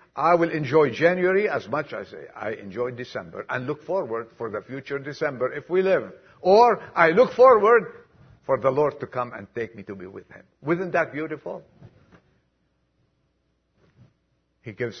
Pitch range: 110-170 Hz